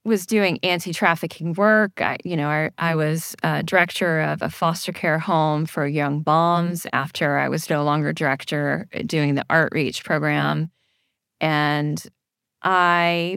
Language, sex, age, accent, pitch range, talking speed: English, female, 20-39, American, 155-190 Hz, 145 wpm